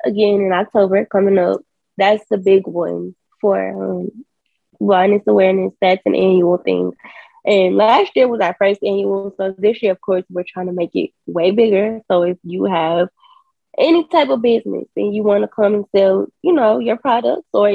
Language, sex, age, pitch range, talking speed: English, female, 10-29, 185-235 Hz, 190 wpm